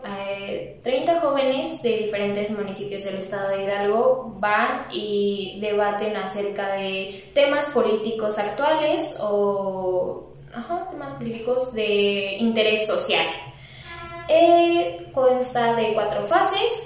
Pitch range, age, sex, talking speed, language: 200-260 Hz, 10-29, female, 105 wpm, Spanish